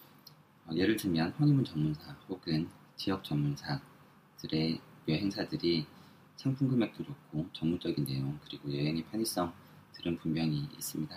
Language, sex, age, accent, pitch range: Korean, male, 40-59, native, 75-95 Hz